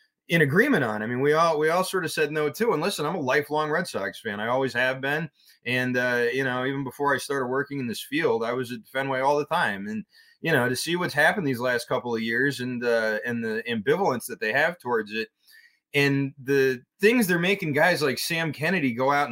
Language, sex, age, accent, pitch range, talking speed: English, male, 20-39, American, 125-160 Hz, 240 wpm